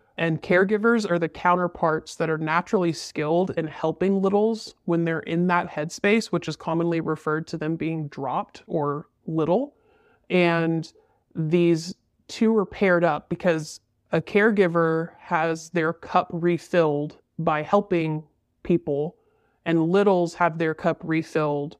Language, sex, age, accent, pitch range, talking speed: English, male, 20-39, American, 155-180 Hz, 135 wpm